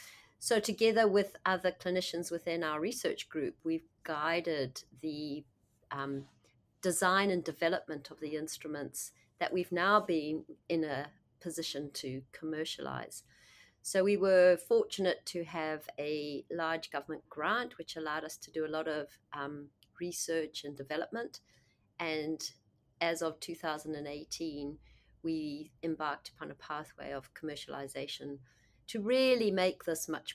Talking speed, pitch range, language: 130 wpm, 140-175 Hz, English